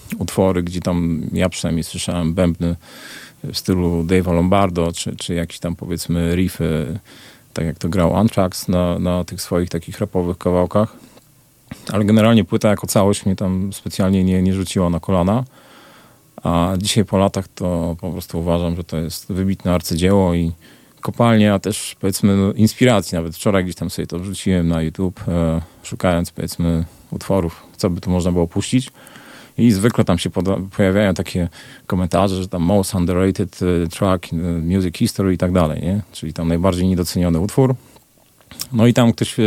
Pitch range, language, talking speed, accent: 85-105 Hz, Polish, 165 wpm, native